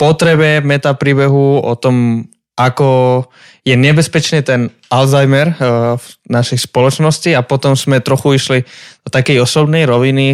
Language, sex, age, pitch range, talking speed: Slovak, male, 20-39, 120-155 Hz, 120 wpm